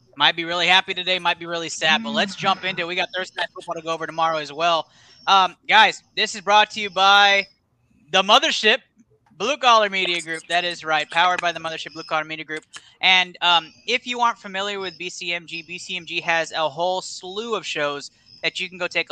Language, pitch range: English, 145-185 Hz